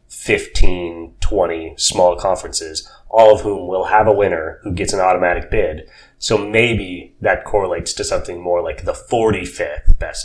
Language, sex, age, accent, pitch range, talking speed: English, male, 30-49, American, 90-125 Hz, 160 wpm